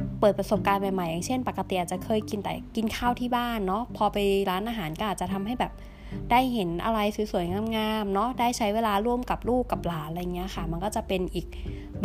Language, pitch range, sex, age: Thai, 180-225 Hz, female, 20-39